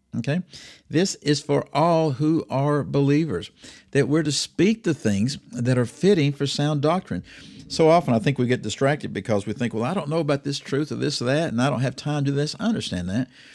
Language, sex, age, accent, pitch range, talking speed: English, male, 50-69, American, 115-145 Hz, 230 wpm